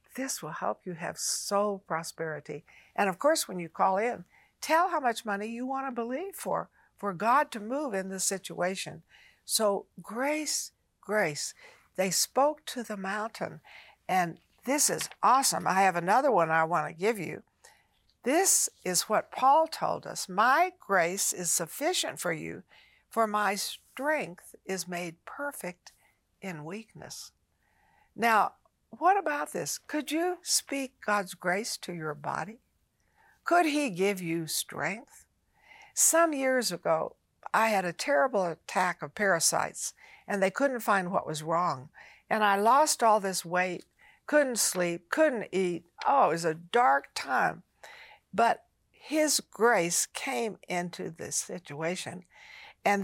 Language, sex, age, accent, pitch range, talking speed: English, female, 60-79, American, 180-270 Hz, 145 wpm